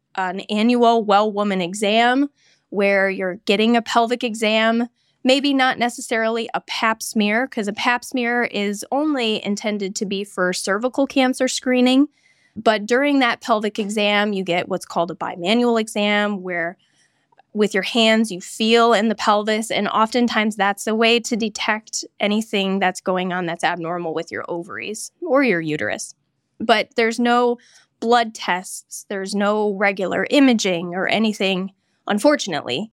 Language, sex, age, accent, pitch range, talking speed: English, female, 10-29, American, 190-235 Hz, 150 wpm